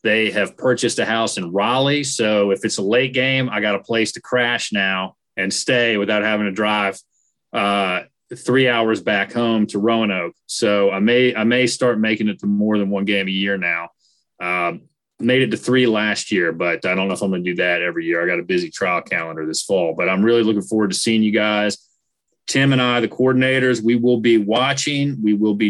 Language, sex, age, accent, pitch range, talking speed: English, male, 30-49, American, 105-125 Hz, 225 wpm